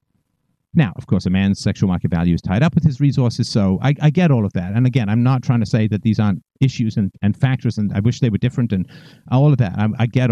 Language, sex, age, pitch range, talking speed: English, male, 50-69, 115-150 Hz, 280 wpm